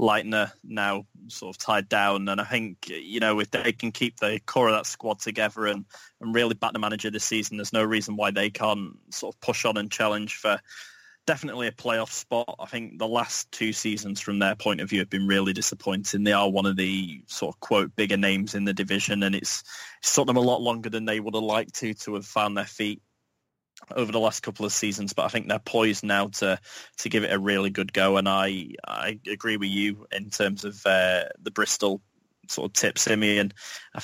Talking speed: 230 wpm